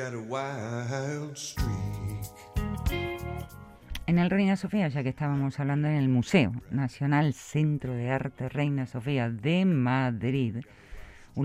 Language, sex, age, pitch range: Spanish, female, 50-69, 120-160 Hz